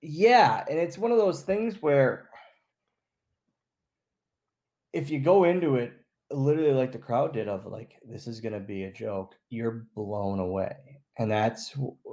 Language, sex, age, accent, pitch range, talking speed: English, male, 20-39, American, 110-155 Hz, 160 wpm